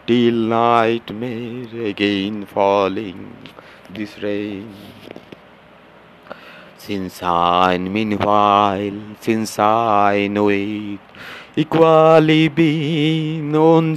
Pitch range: 100-140 Hz